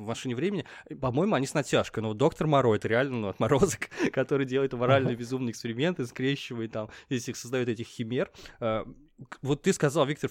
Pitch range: 115-135 Hz